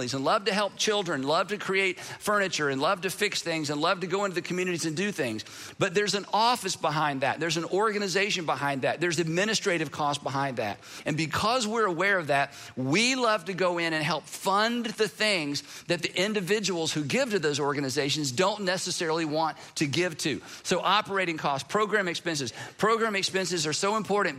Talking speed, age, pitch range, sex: 195 wpm, 50-69, 155-205 Hz, male